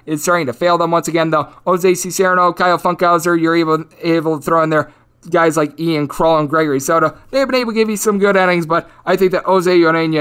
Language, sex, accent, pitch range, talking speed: English, male, American, 165-215 Hz, 240 wpm